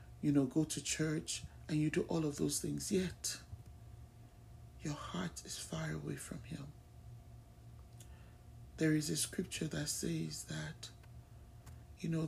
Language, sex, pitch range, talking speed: English, male, 100-165 Hz, 140 wpm